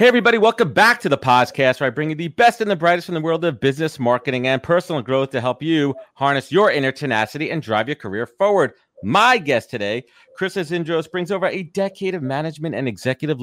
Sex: male